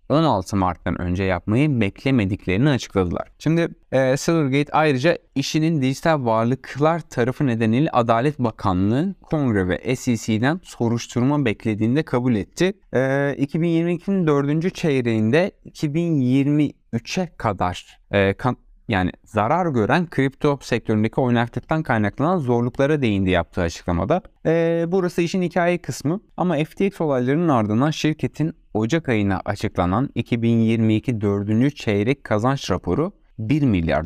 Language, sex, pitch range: Turkish, male, 110-155 Hz